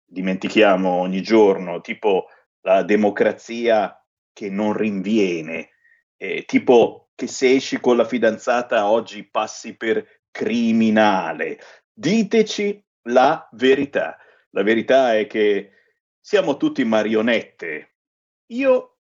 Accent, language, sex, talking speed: native, Italian, male, 100 wpm